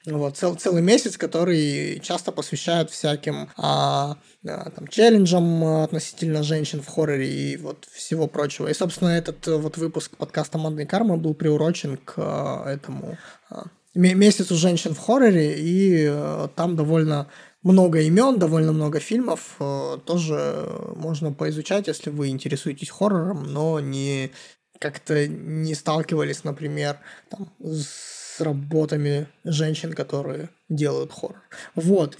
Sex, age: male, 20-39